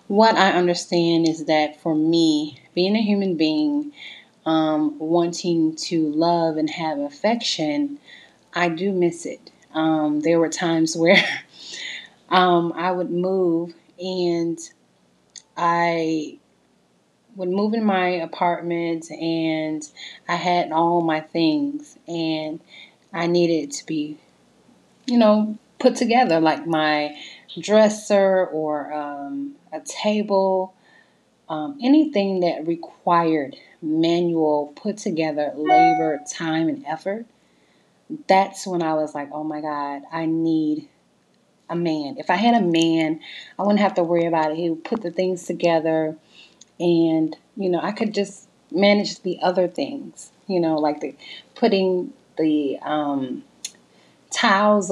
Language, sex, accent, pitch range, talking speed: English, female, American, 155-195 Hz, 130 wpm